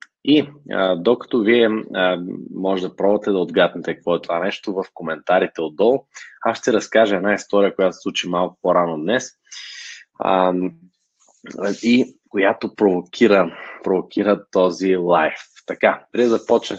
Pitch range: 90-115 Hz